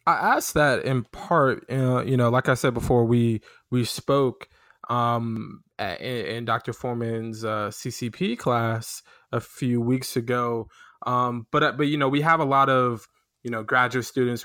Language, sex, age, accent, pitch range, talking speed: English, male, 20-39, American, 115-135 Hz, 170 wpm